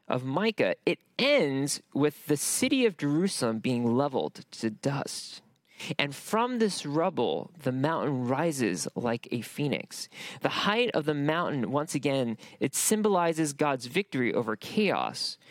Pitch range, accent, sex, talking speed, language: 130-195 Hz, American, male, 140 wpm, English